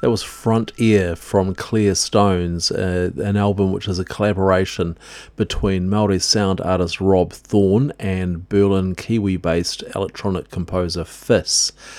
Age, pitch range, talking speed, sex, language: 50-69, 90-105 Hz, 130 wpm, male, English